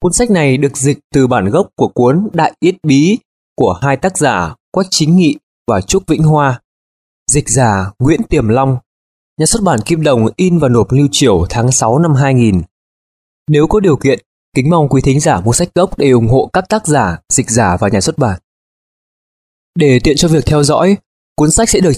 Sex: male